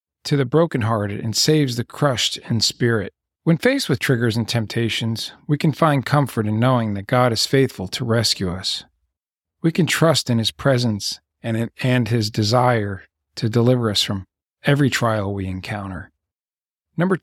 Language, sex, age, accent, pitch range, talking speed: English, male, 50-69, American, 105-135 Hz, 160 wpm